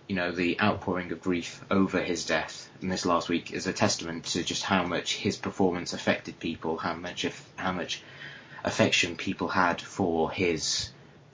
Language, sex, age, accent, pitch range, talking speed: English, male, 20-39, British, 85-95 Hz, 180 wpm